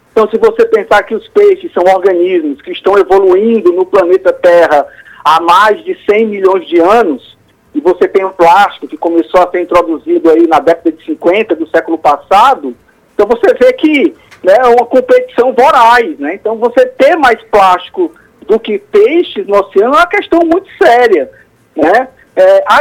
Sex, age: male, 50-69